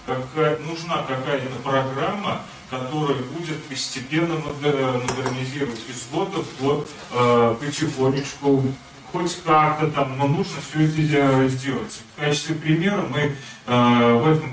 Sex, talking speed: male, 110 wpm